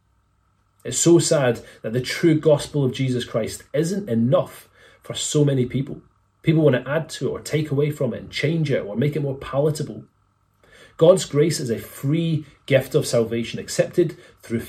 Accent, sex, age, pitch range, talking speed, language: British, male, 30-49, 110-145 Hz, 185 wpm, English